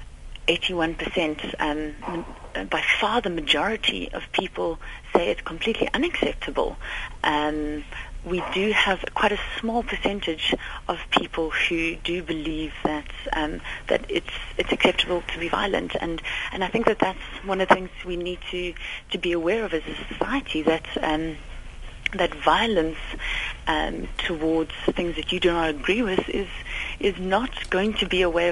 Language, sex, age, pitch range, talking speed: Dutch, female, 30-49, 170-225 Hz, 160 wpm